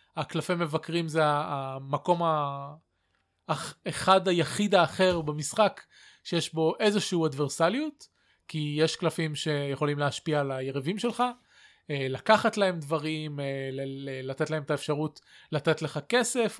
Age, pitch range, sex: 20-39, 145-175 Hz, male